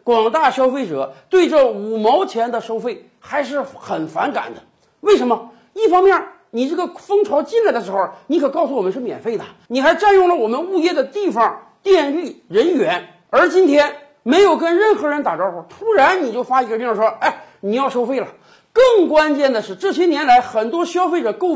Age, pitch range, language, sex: 50-69, 245-360 Hz, Chinese, male